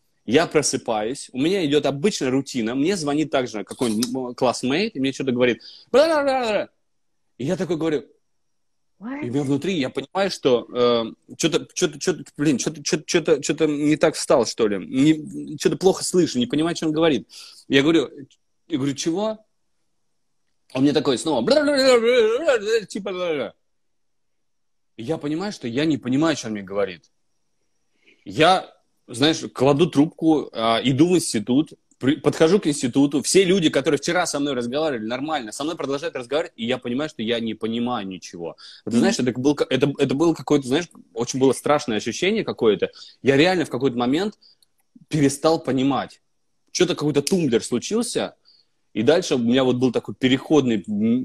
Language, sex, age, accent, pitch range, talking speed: Russian, male, 20-39, native, 130-180 Hz, 150 wpm